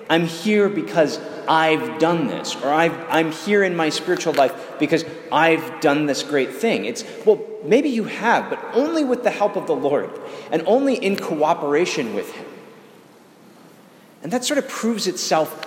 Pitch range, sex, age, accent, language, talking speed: 150-210 Hz, male, 30-49, American, English, 170 wpm